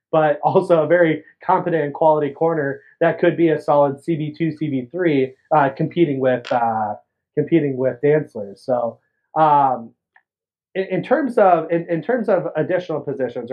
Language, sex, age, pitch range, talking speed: English, male, 30-49, 140-170 Hz, 160 wpm